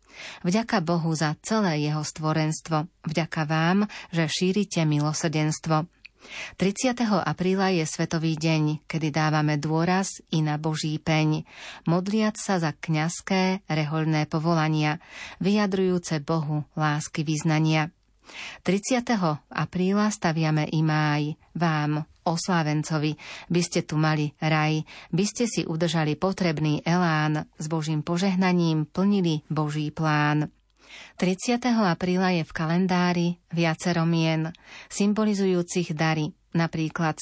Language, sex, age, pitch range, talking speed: Slovak, female, 40-59, 155-180 Hz, 110 wpm